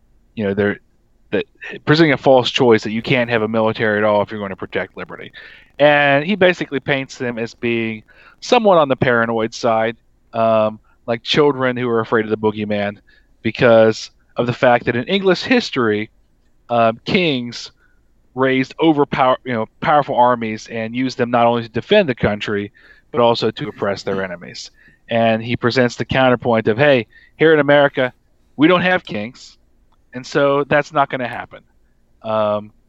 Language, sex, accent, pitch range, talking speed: English, male, American, 110-135 Hz, 175 wpm